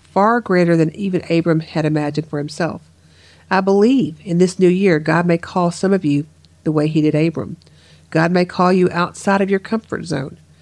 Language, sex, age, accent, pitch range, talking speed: English, female, 50-69, American, 155-185 Hz, 200 wpm